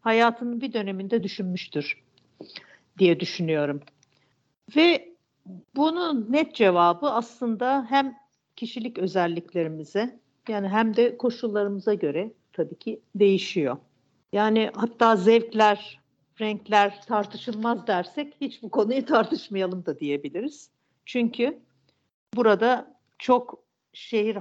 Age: 50-69